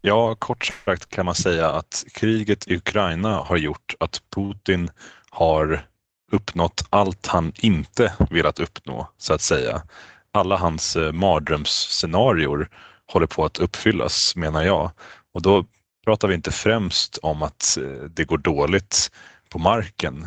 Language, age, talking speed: Swedish, 30-49, 135 wpm